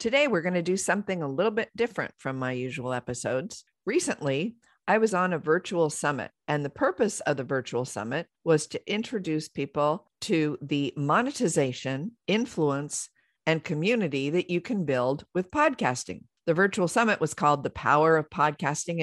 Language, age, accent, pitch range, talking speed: English, 50-69, American, 145-185 Hz, 165 wpm